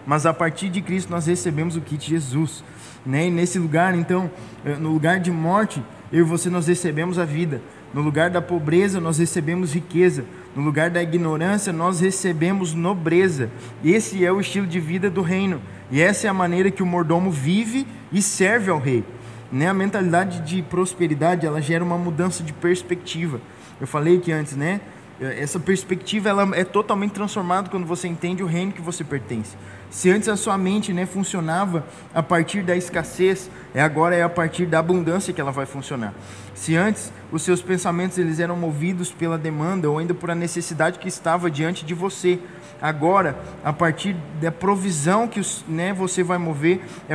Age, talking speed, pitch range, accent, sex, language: 20-39, 180 wpm, 160-185 Hz, Brazilian, male, Portuguese